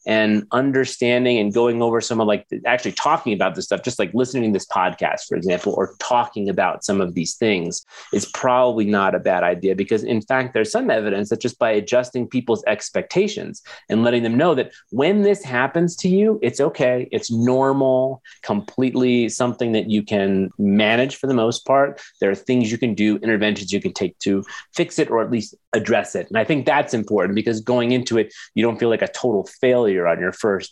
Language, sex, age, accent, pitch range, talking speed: English, male, 30-49, American, 105-125 Hz, 210 wpm